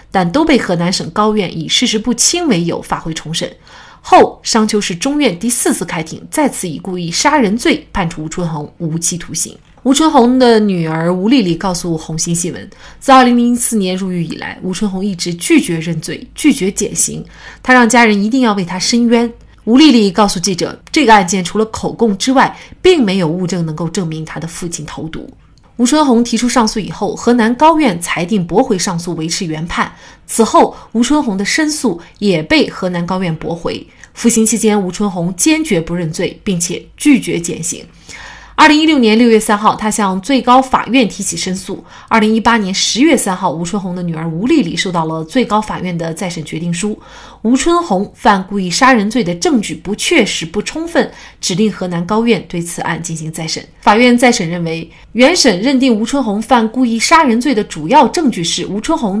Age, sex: 30-49, female